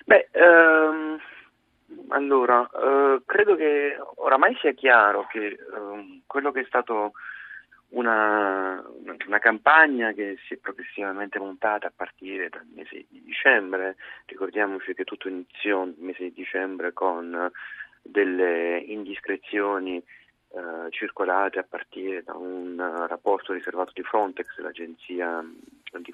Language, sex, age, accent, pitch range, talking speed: Italian, male, 30-49, native, 90-115 Hz, 120 wpm